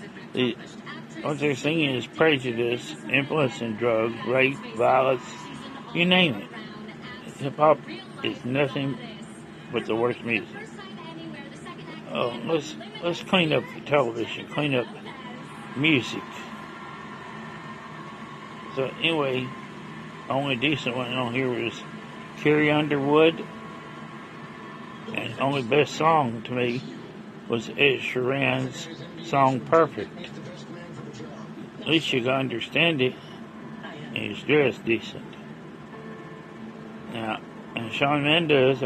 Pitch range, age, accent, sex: 120-165 Hz, 60-79, American, male